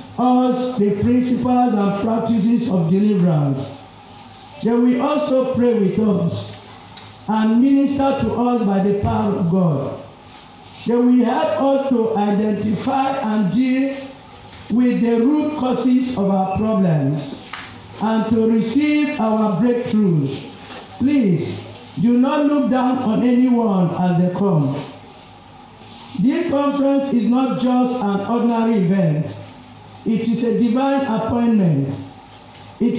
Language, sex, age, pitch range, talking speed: English, male, 50-69, 190-250 Hz, 120 wpm